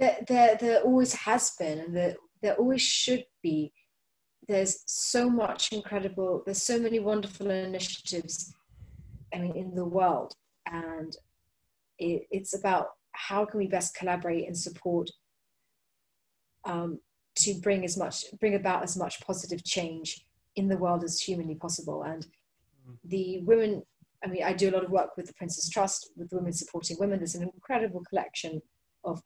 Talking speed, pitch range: 165 wpm, 165-200 Hz